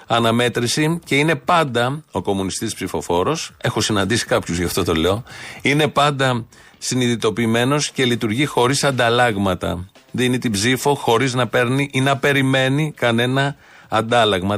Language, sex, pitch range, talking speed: Greek, male, 110-140 Hz, 130 wpm